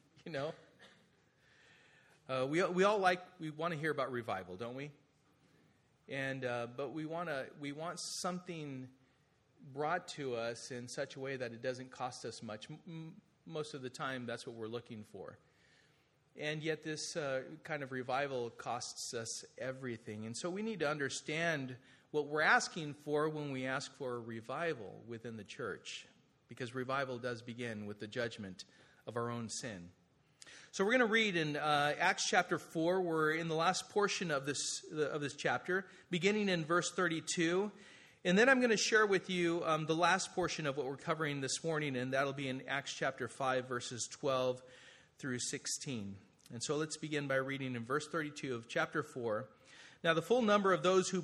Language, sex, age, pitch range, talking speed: English, male, 40-59, 130-170 Hz, 185 wpm